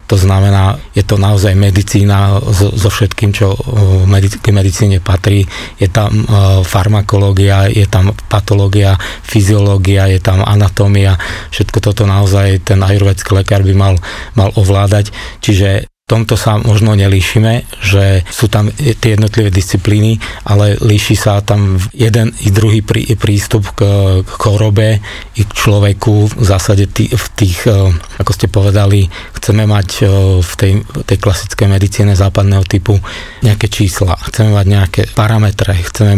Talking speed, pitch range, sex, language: 135 wpm, 100-110 Hz, male, Slovak